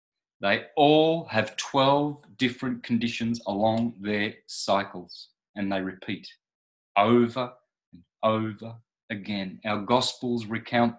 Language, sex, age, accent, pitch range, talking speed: English, male, 30-49, Australian, 110-130 Hz, 105 wpm